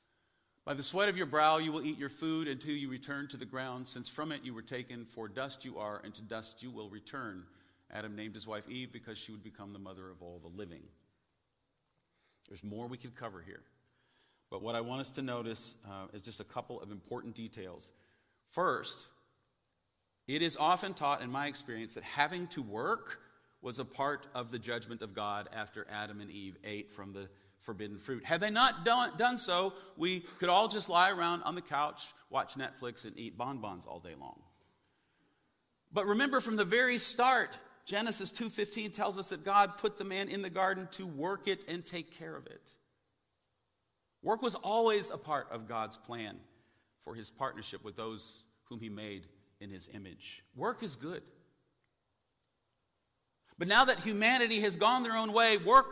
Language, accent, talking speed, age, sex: English, American, 190 wpm, 40-59, male